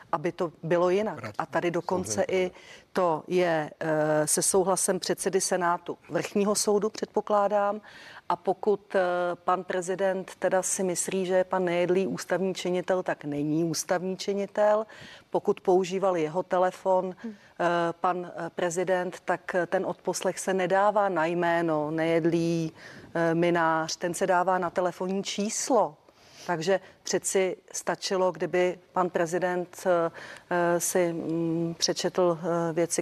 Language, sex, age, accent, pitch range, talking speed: Czech, female, 40-59, native, 170-185 Hz, 115 wpm